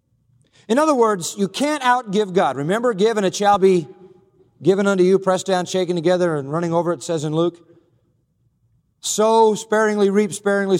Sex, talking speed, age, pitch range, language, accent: male, 170 wpm, 40-59, 150-215 Hz, English, American